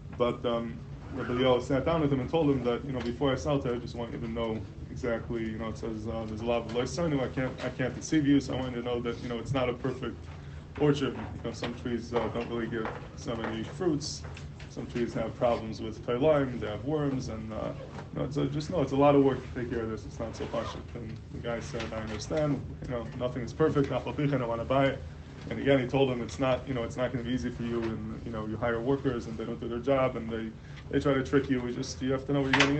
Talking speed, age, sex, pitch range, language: 295 wpm, 20-39, male, 115-130 Hz, English